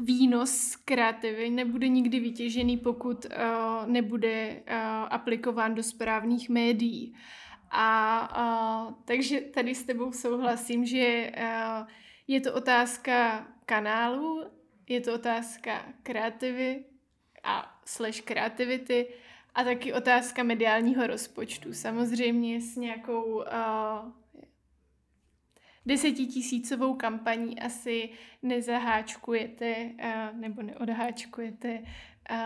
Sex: female